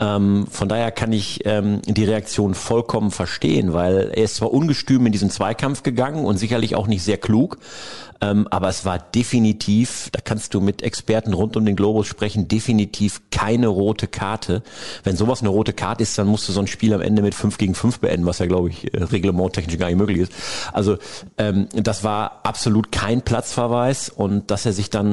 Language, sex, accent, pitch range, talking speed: German, male, German, 100-115 Hz, 200 wpm